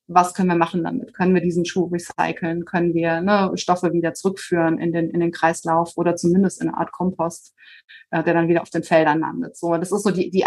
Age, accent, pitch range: 30-49, German, 165-185 Hz